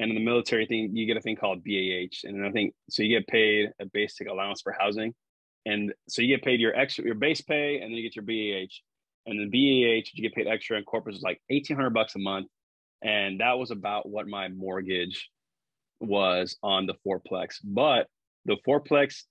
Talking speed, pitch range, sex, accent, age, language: 210 wpm, 105-120 Hz, male, American, 20-39, English